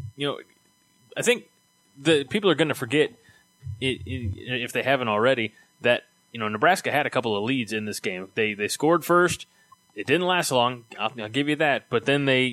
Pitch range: 115-150 Hz